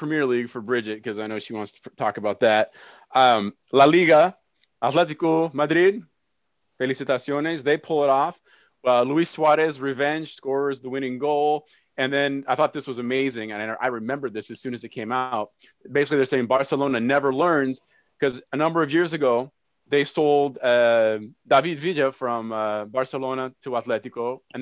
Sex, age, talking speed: male, 20-39, 180 wpm